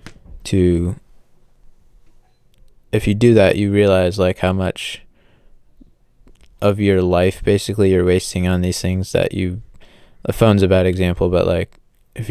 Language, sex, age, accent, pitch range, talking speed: English, male, 20-39, American, 90-105 Hz, 140 wpm